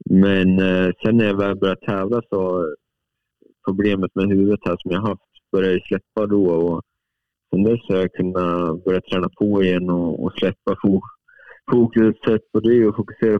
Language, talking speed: Swedish, 155 wpm